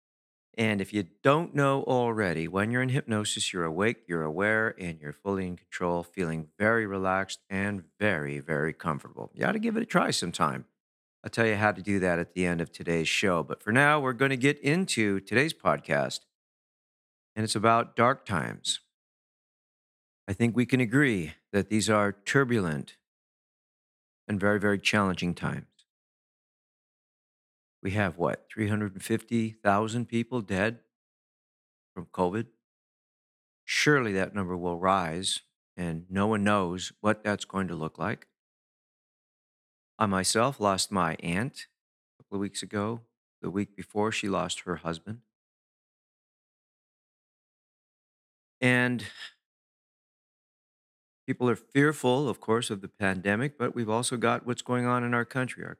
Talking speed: 145 wpm